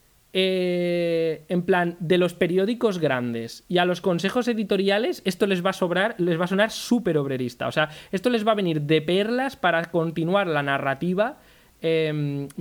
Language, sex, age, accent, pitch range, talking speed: Spanish, male, 20-39, Spanish, 150-190 Hz, 175 wpm